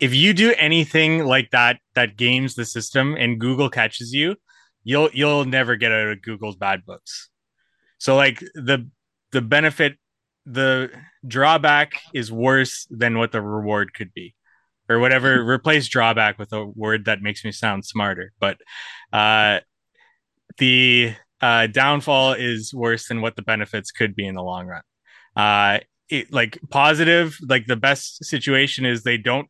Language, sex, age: English, male, 20-39